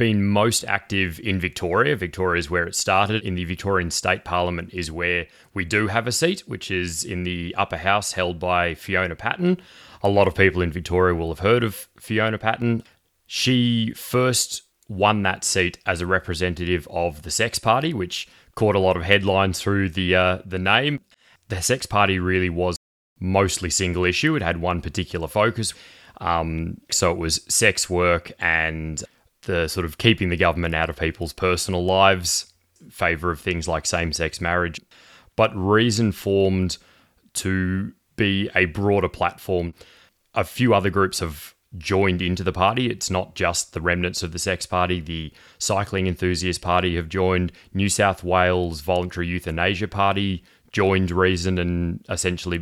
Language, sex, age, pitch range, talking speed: English, male, 30-49, 85-100 Hz, 165 wpm